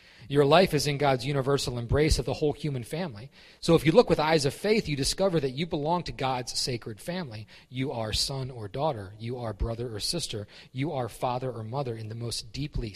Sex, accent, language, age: male, American, English, 40-59